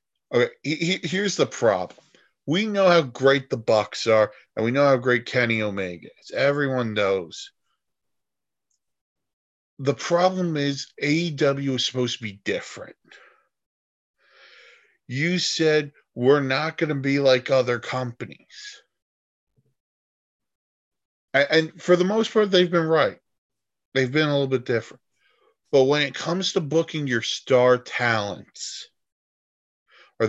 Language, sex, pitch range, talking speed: English, male, 115-160 Hz, 130 wpm